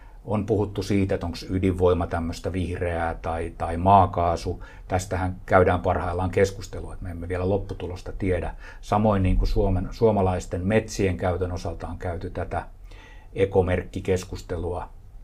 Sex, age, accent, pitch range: male, 60-79, native, 90-105 Hz